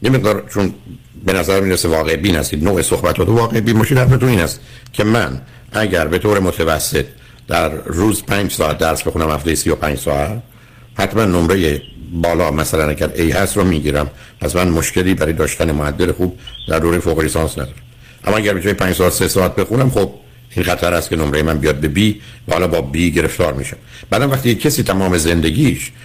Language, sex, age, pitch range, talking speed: Persian, male, 60-79, 85-115 Hz, 190 wpm